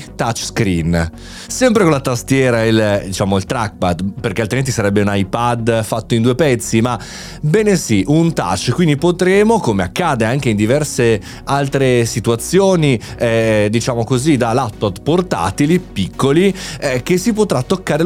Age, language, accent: 30-49, Italian, native